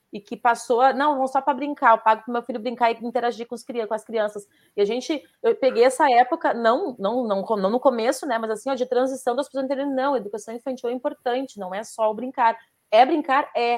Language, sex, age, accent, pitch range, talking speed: Portuguese, female, 30-49, Brazilian, 225-290 Hz, 255 wpm